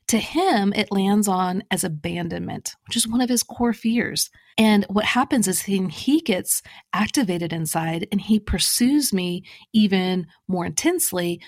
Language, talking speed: English, 155 wpm